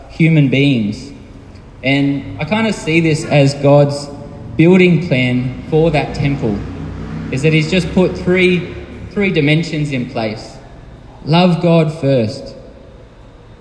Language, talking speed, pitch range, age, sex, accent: English, 125 wpm, 125-155 Hz, 20-39, male, Australian